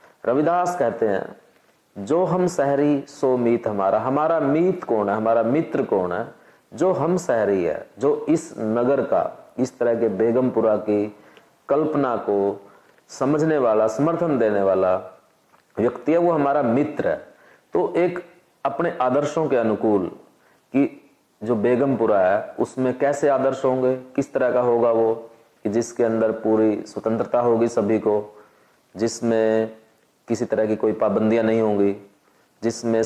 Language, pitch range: Hindi, 105-140 Hz